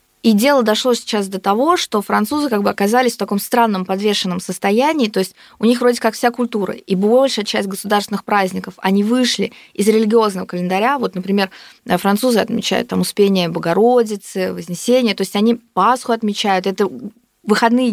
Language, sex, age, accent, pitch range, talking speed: Russian, female, 20-39, native, 190-235 Hz, 165 wpm